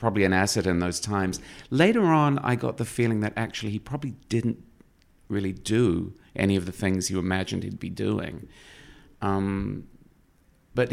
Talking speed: 165 wpm